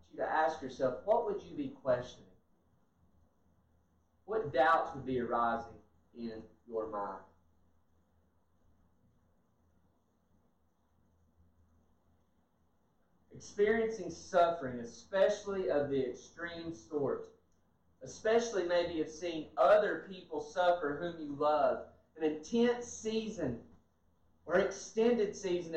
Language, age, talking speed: English, 30-49, 90 wpm